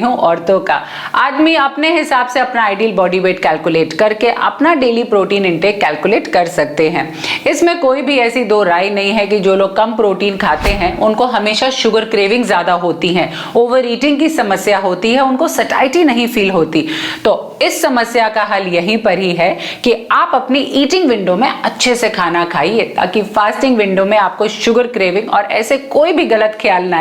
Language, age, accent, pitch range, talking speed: Hindi, 50-69, native, 195-270 Hz, 60 wpm